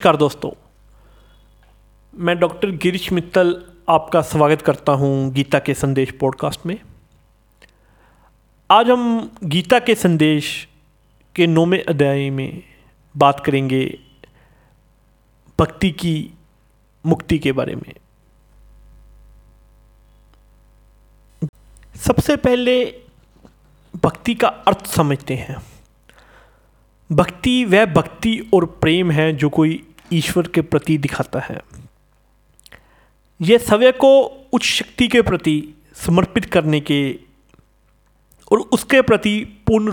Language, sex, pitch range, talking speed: Hindi, male, 145-195 Hz, 100 wpm